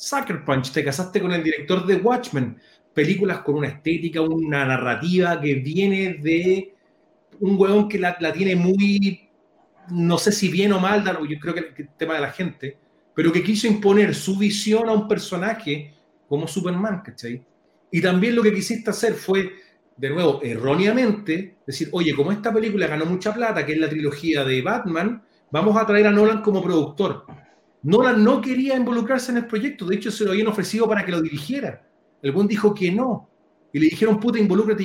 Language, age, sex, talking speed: Spanish, 40-59, male, 190 wpm